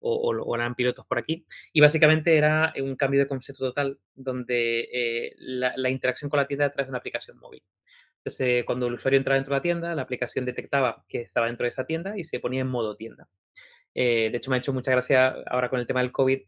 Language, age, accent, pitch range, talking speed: Spanish, 20-39, Spanish, 125-155 Hz, 240 wpm